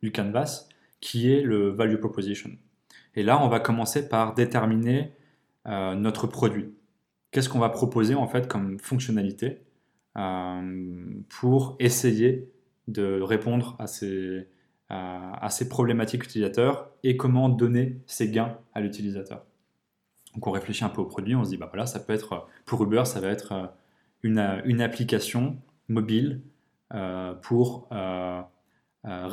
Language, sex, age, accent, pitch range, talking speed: French, male, 20-39, French, 100-125 Hz, 150 wpm